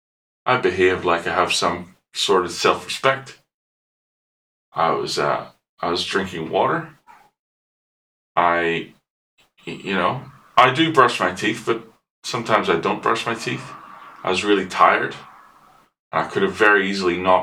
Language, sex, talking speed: English, male, 140 wpm